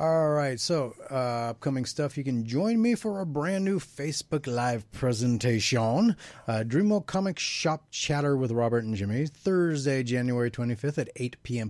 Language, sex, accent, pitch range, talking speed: English, male, American, 115-150 Hz, 160 wpm